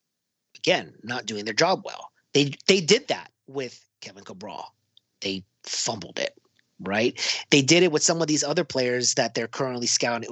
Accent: American